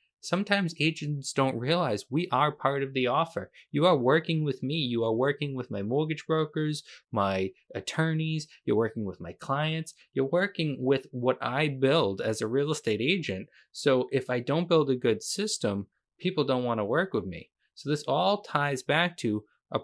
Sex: male